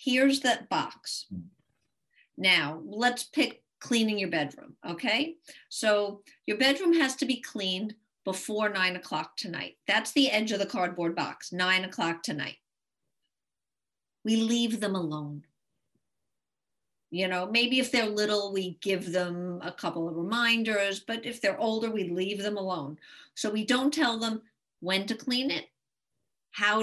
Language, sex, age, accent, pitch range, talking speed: English, female, 50-69, American, 190-245 Hz, 150 wpm